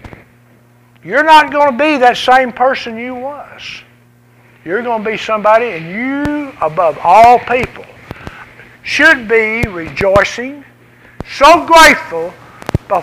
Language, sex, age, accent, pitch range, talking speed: English, male, 60-79, American, 205-280 Hz, 120 wpm